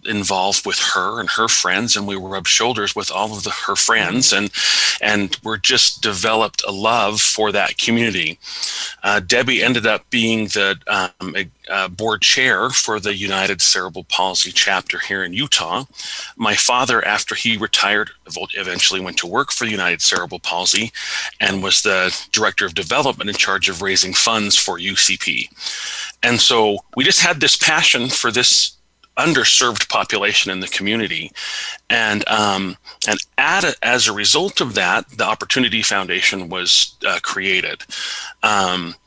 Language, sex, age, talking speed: English, male, 40-59, 160 wpm